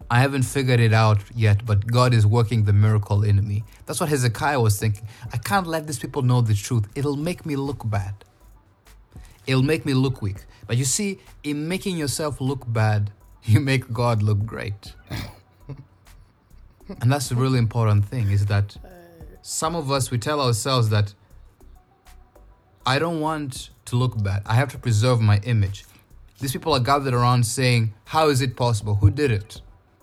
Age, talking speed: 20-39, 180 wpm